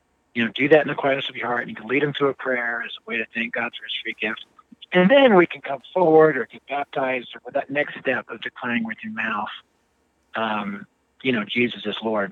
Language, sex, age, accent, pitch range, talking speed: English, male, 50-69, American, 125-160 Hz, 255 wpm